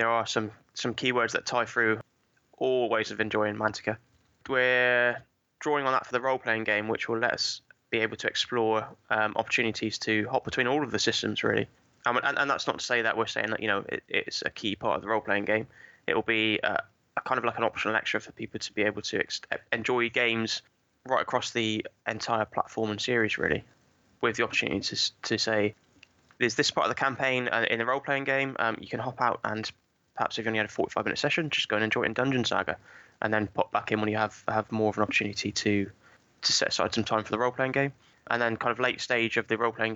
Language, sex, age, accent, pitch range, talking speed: English, male, 20-39, British, 105-120 Hz, 240 wpm